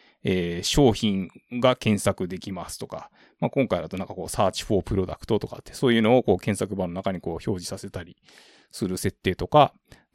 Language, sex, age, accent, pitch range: Japanese, male, 20-39, native, 95-120 Hz